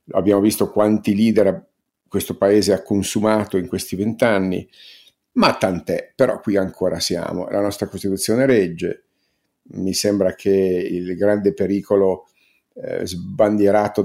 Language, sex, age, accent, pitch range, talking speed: Italian, male, 50-69, native, 100-120 Hz, 125 wpm